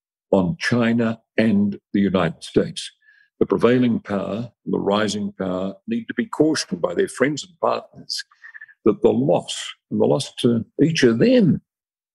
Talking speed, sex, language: 155 wpm, male, English